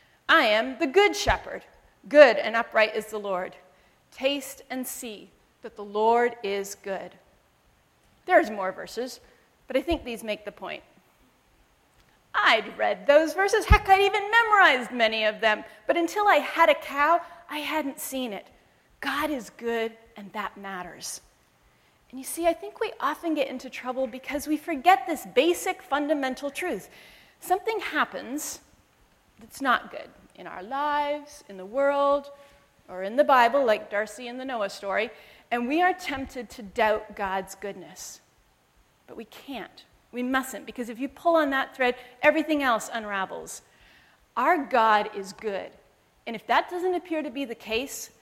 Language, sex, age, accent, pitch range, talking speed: English, female, 40-59, American, 215-300 Hz, 160 wpm